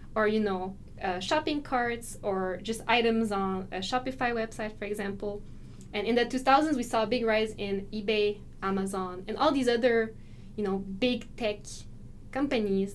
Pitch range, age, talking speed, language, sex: 195-235 Hz, 10-29, 165 wpm, English, female